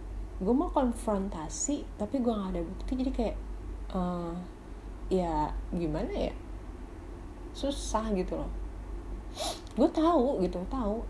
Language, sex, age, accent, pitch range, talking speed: Indonesian, female, 30-49, native, 160-230 Hz, 120 wpm